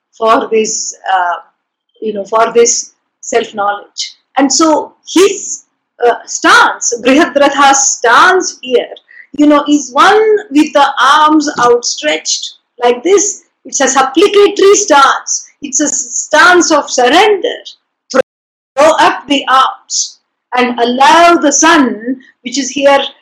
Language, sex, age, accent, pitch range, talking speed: English, female, 50-69, Indian, 240-335 Hz, 120 wpm